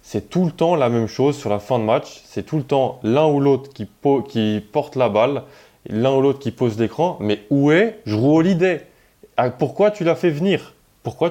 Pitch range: 110-145 Hz